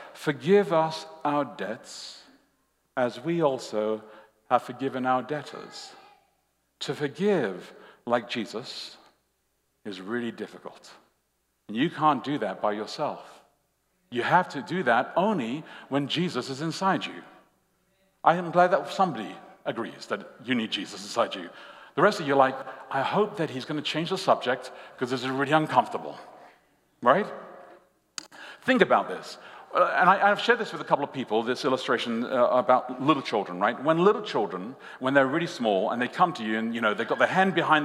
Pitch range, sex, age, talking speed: 130-200 Hz, male, 60-79, 175 wpm